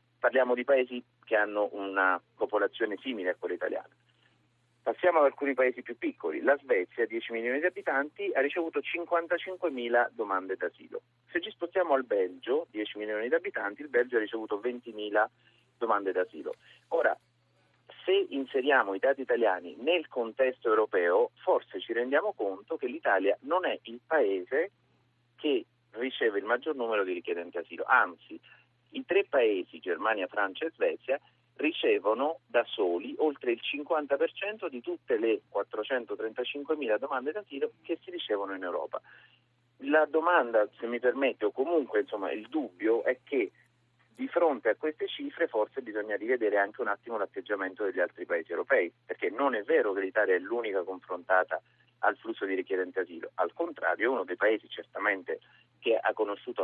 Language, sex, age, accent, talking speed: Italian, male, 40-59, native, 160 wpm